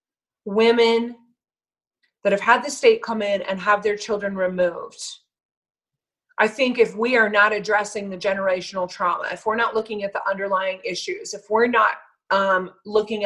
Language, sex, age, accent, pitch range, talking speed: English, female, 30-49, American, 195-230 Hz, 165 wpm